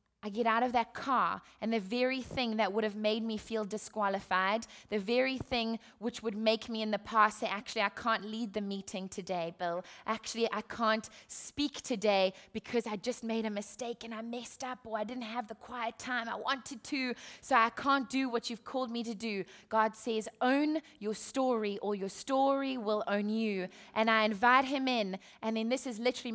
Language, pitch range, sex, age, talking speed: English, 220-260 Hz, female, 20-39, 210 wpm